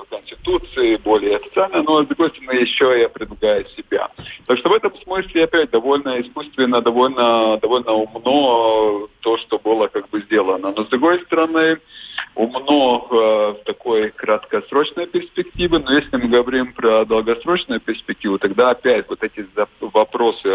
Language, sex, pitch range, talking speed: Russian, male, 105-165 Hz, 145 wpm